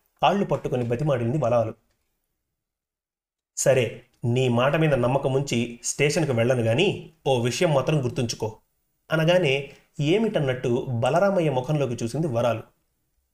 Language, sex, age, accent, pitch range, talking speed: Telugu, male, 30-49, native, 125-165 Hz, 100 wpm